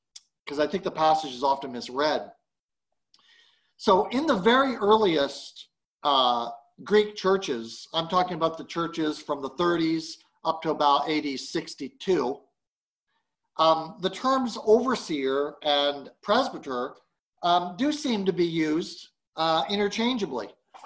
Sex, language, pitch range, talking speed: male, English, 145-195 Hz, 125 wpm